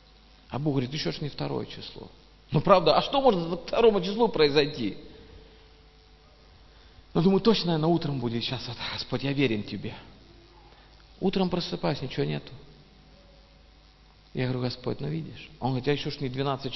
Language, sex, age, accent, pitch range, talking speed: Russian, male, 50-69, native, 115-185 Hz, 165 wpm